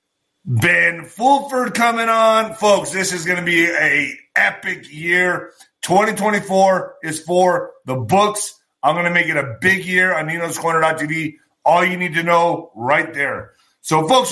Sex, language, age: male, English, 30-49